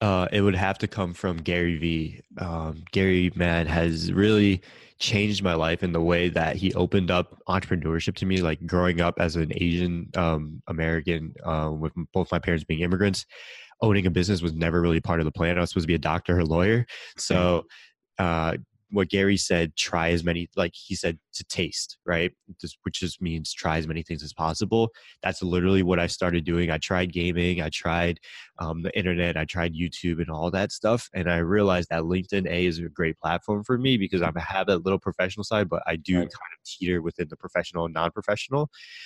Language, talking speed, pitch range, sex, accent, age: English, 210 wpm, 85-95 Hz, male, American, 20-39